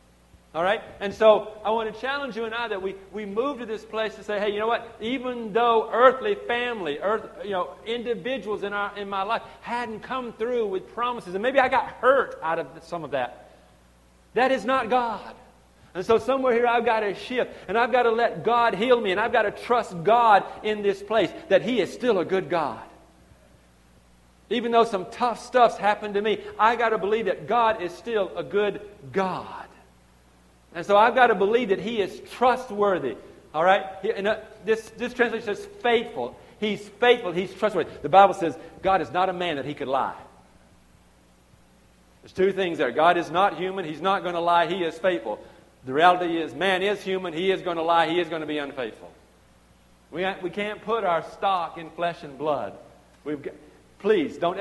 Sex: male